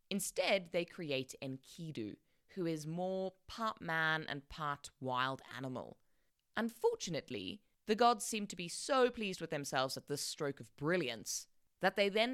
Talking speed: 150 wpm